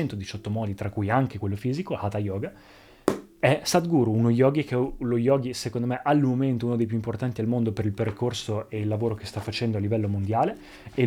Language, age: Italian, 20-39